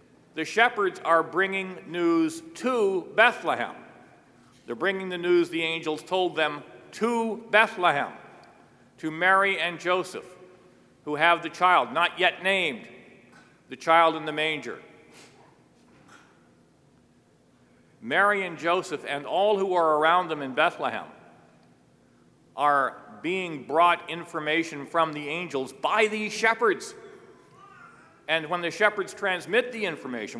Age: 50-69